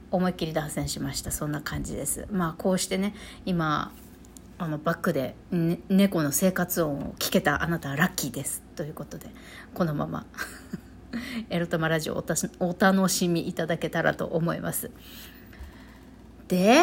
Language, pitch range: Japanese, 175-240 Hz